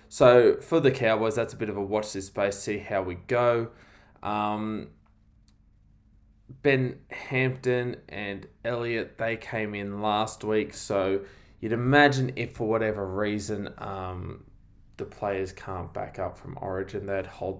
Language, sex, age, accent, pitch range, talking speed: English, male, 20-39, Australian, 100-125 Hz, 145 wpm